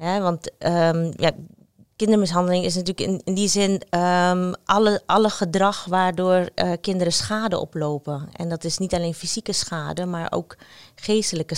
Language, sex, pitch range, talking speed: Dutch, female, 165-185 Hz, 155 wpm